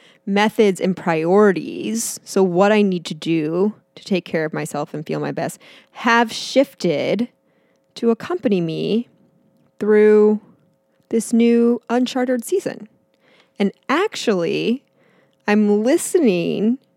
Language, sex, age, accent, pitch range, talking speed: English, female, 20-39, American, 175-235 Hz, 115 wpm